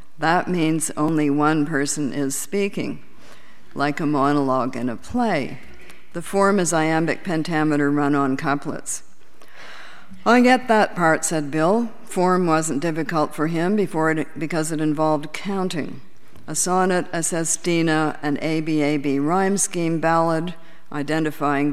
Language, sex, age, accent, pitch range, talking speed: English, female, 60-79, American, 145-170 Hz, 135 wpm